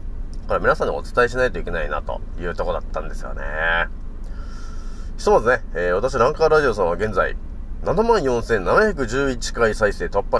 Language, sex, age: Japanese, male, 30-49